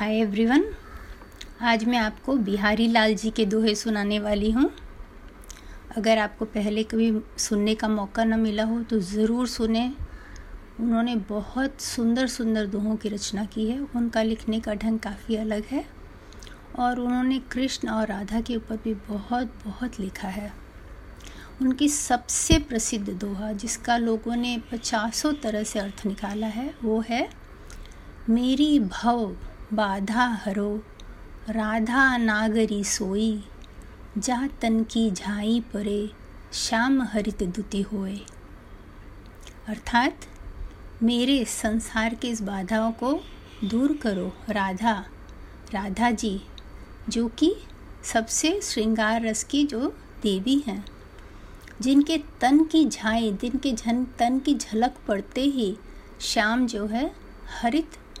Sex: female